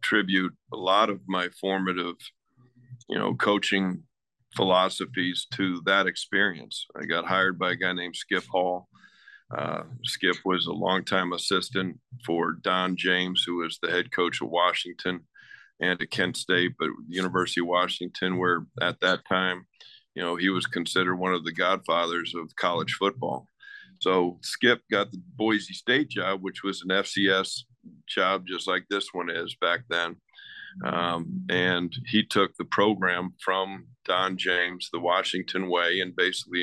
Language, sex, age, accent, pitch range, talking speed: English, male, 50-69, American, 90-100 Hz, 155 wpm